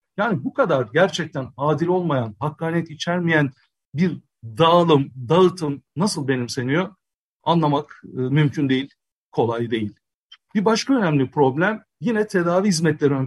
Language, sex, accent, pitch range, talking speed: Turkish, male, native, 135-180 Hz, 120 wpm